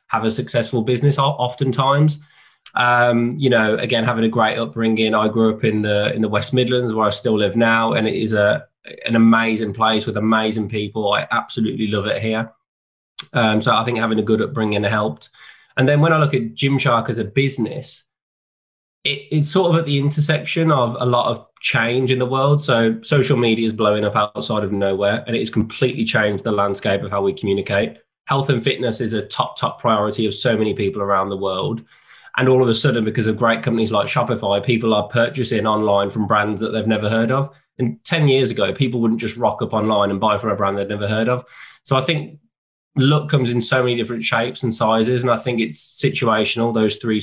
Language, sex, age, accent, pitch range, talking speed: English, male, 20-39, British, 105-125 Hz, 215 wpm